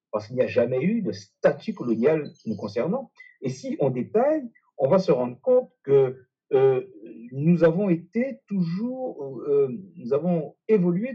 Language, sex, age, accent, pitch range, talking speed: French, male, 50-69, French, 140-225 Hz, 160 wpm